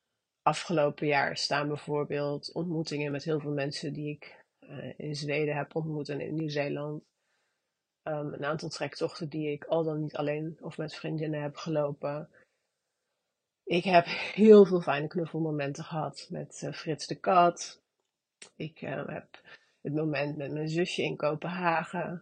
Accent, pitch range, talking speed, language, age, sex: Dutch, 150-175 Hz, 150 wpm, Dutch, 30-49, female